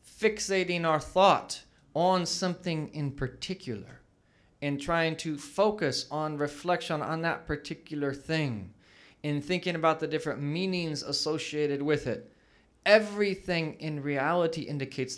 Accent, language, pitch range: American, English, 140-170 Hz